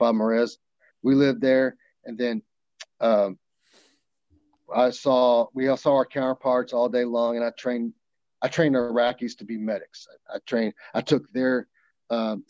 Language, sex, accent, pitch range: English, male, American, 110-135 Hz